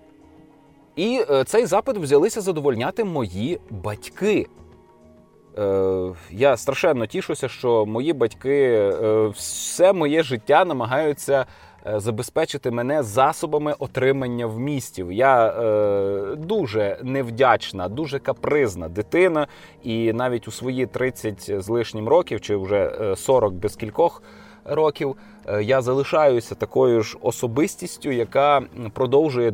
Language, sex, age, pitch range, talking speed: Ukrainian, male, 20-39, 105-140 Hz, 105 wpm